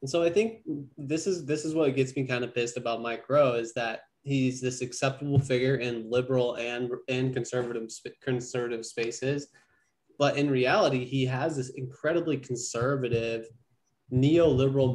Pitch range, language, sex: 125-140 Hz, English, male